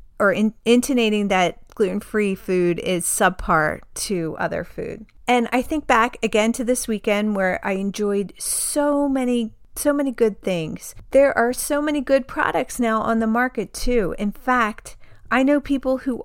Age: 40-59